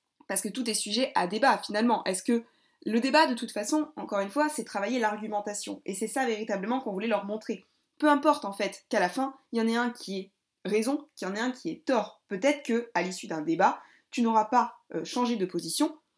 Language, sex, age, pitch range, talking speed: French, female, 20-39, 195-275 Hz, 235 wpm